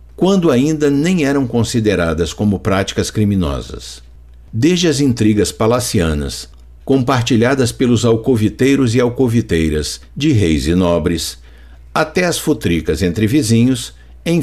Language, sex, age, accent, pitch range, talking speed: Portuguese, male, 60-79, Brazilian, 80-130 Hz, 110 wpm